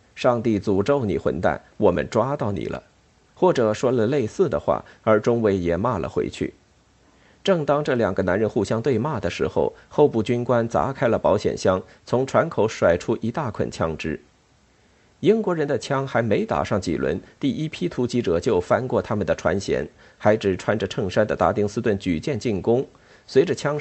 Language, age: Chinese, 50-69